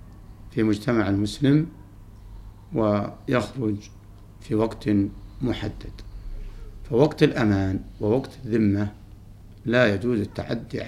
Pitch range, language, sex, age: 100-115 Hz, Arabic, male, 60-79